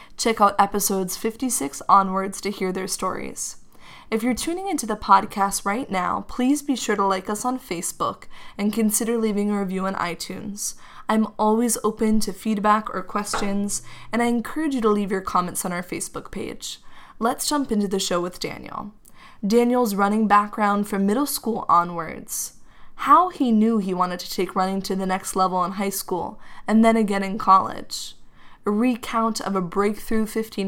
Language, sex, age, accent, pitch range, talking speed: English, female, 20-39, American, 195-220 Hz, 175 wpm